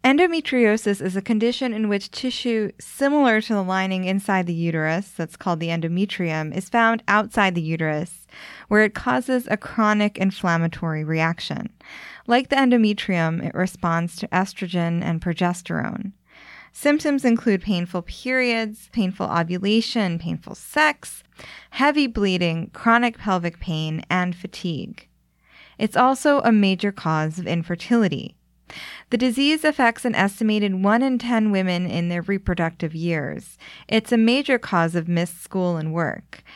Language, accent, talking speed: English, American, 135 wpm